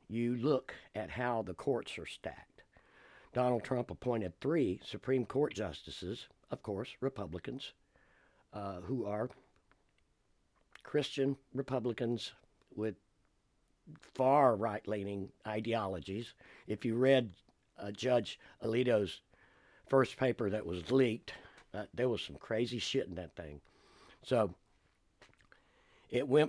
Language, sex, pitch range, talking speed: English, male, 95-125 Hz, 110 wpm